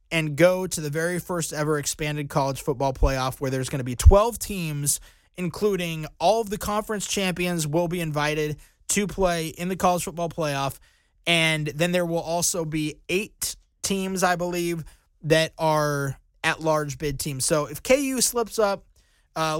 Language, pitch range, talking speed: English, 145-180 Hz, 170 wpm